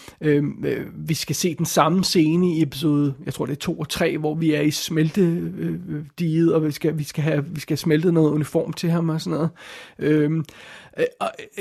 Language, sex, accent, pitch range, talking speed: Danish, male, native, 155-185 Hz, 190 wpm